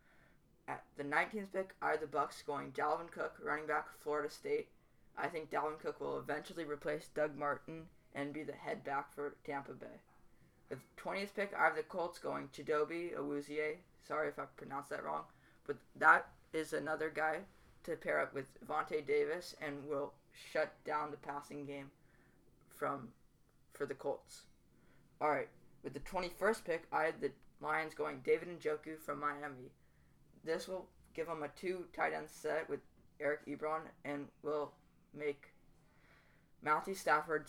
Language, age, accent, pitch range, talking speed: English, 20-39, American, 145-180 Hz, 160 wpm